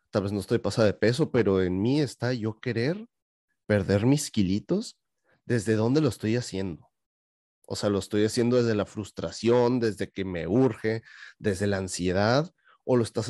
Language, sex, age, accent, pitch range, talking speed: Spanish, male, 30-49, Mexican, 100-125 Hz, 175 wpm